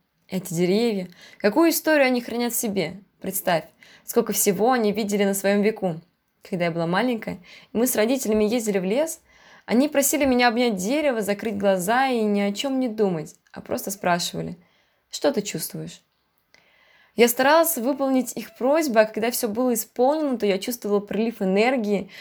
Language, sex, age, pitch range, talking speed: Russian, female, 20-39, 200-260 Hz, 160 wpm